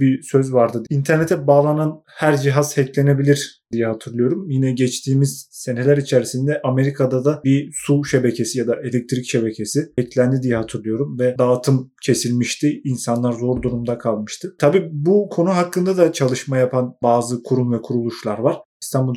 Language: Turkish